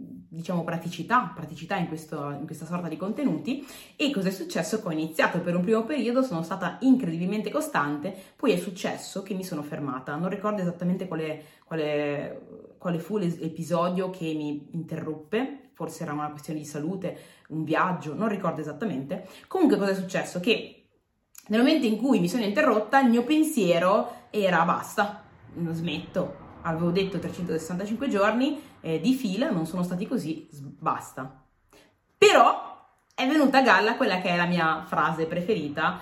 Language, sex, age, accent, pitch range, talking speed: Italian, female, 20-39, native, 160-220 Hz, 160 wpm